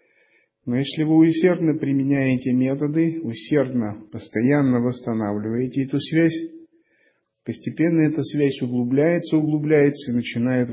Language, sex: Russian, male